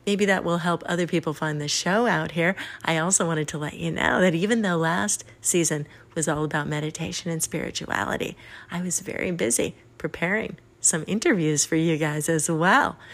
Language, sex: English, female